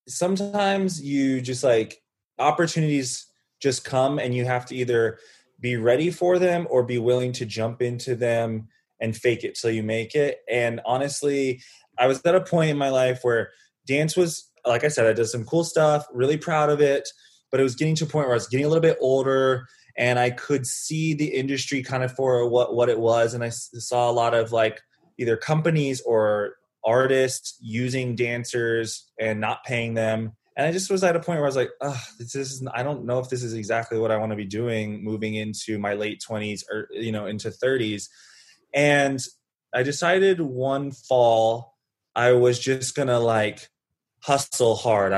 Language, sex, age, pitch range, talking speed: English, male, 20-39, 115-145 Hz, 200 wpm